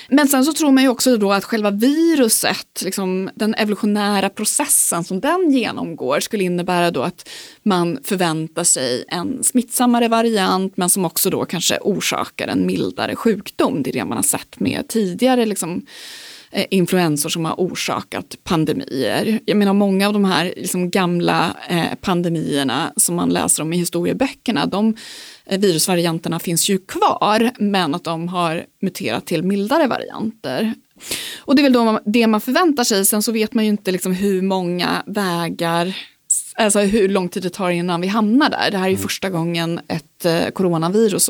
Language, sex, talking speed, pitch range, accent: Swedish, female, 170 wpm, 175-225 Hz, native